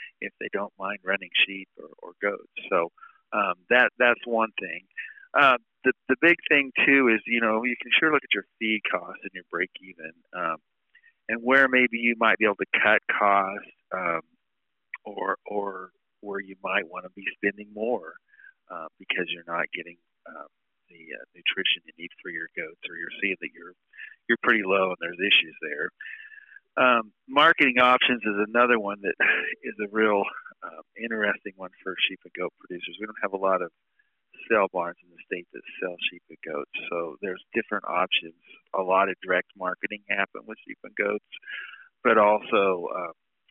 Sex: male